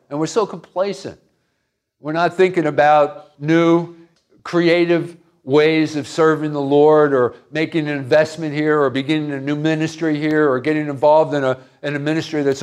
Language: English